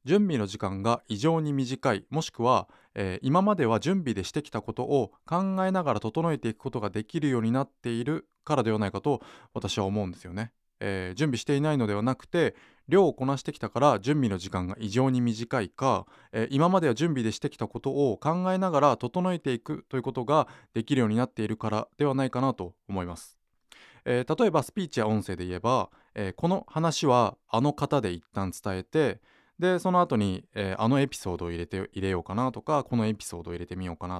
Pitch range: 100-145 Hz